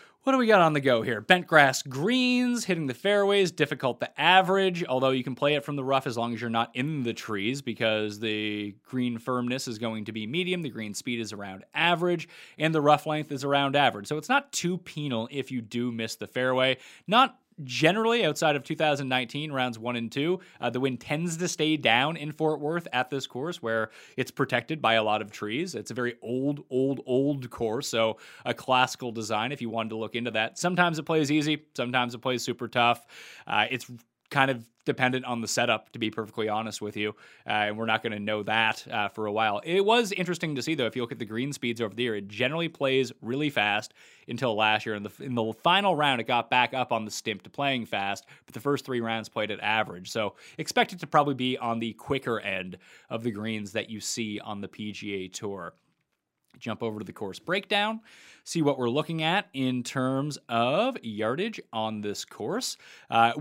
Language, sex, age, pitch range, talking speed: English, male, 30-49, 115-155 Hz, 220 wpm